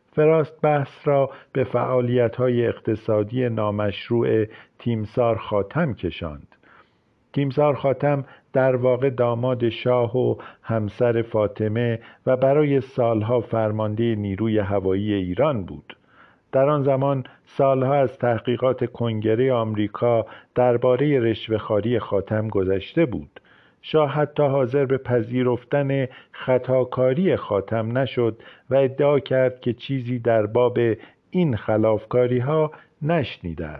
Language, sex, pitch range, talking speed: Persian, male, 115-140 Hz, 105 wpm